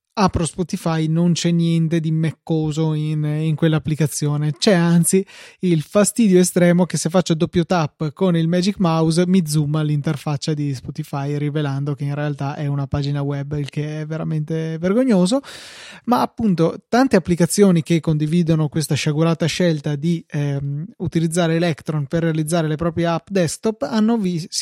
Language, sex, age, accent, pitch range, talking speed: Italian, male, 20-39, native, 155-185 Hz, 155 wpm